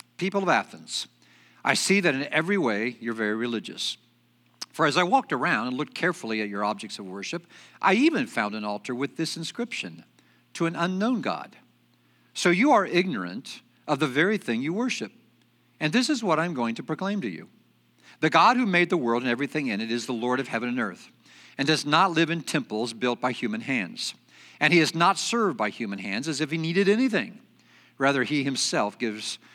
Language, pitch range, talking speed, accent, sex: English, 115-180 Hz, 205 wpm, American, male